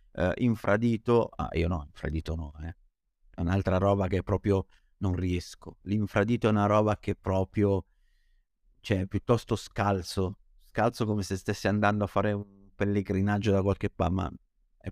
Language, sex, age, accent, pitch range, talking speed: Italian, male, 50-69, native, 90-110 Hz, 155 wpm